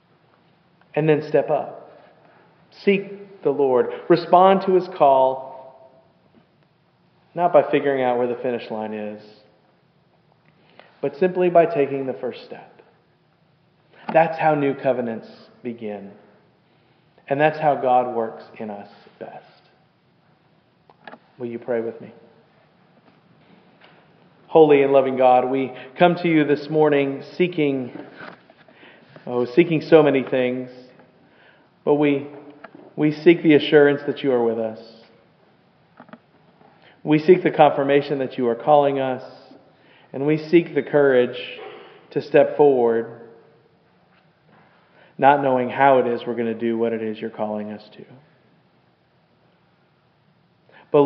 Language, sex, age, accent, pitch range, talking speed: English, male, 40-59, American, 125-160 Hz, 125 wpm